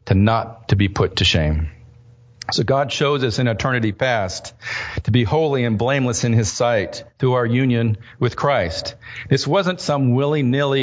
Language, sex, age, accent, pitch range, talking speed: English, male, 50-69, American, 115-135 Hz, 170 wpm